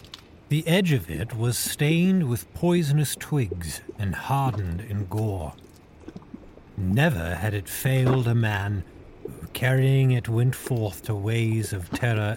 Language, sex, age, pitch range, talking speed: English, male, 50-69, 95-140 Hz, 135 wpm